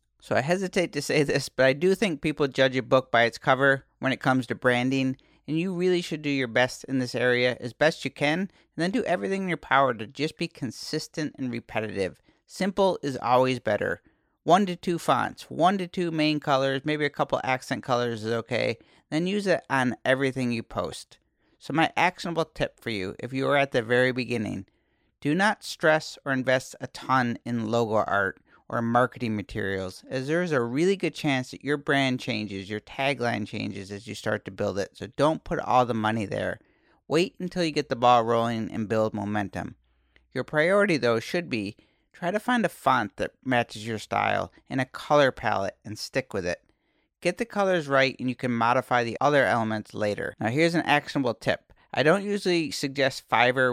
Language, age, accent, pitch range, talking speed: English, 40-59, American, 115-155 Hz, 205 wpm